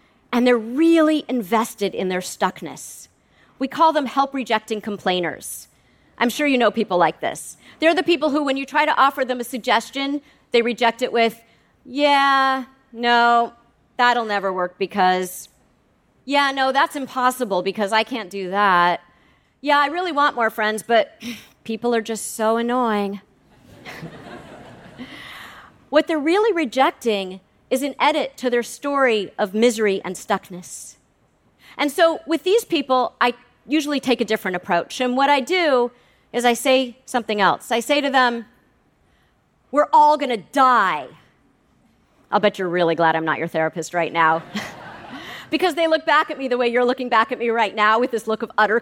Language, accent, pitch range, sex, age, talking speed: English, American, 215-285 Hz, female, 40-59, 165 wpm